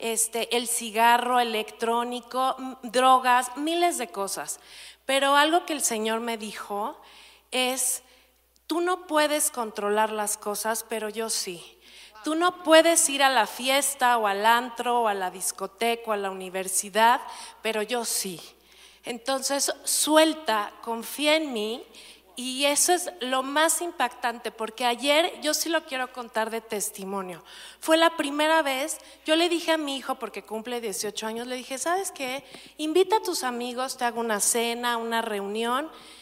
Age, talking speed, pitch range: 40-59, 155 wpm, 225-305 Hz